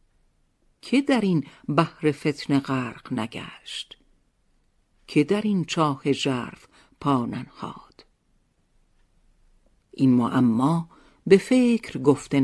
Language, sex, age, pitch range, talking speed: Persian, female, 50-69, 140-185 Hz, 90 wpm